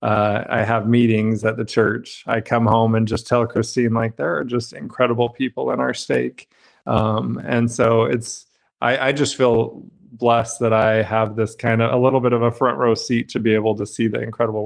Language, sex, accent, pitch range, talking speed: English, male, American, 110-125 Hz, 215 wpm